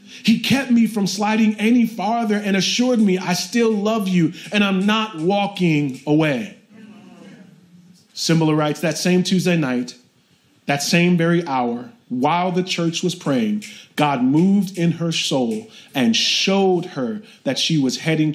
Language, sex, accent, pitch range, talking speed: English, male, American, 155-225 Hz, 150 wpm